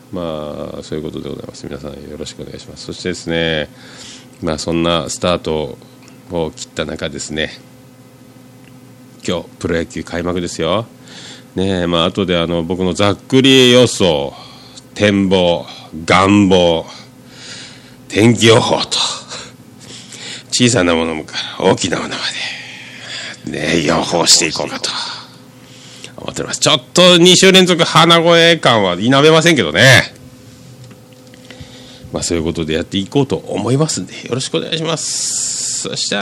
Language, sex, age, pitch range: Japanese, male, 40-59, 85-130 Hz